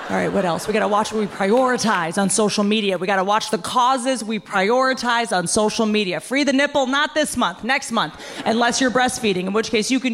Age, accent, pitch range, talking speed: 30-49, American, 205-270 Hz, 245 wpm